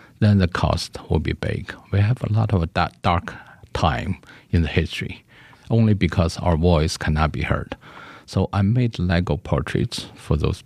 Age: 50-69